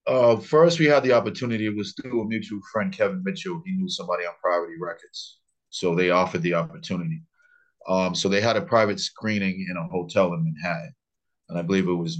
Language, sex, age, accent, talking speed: English, male, 30-49, American, 205 wpm